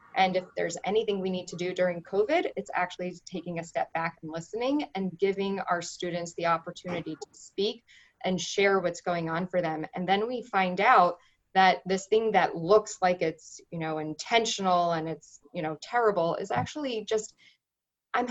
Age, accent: 20-39, American